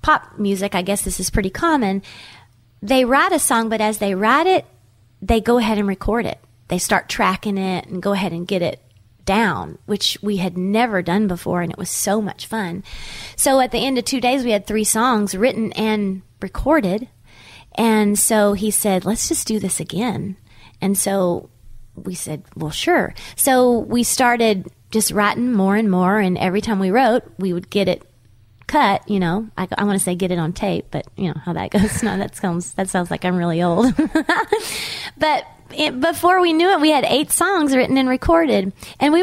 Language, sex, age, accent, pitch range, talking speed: English, female, 30-49, American, 185-240 Hz, 205 wpm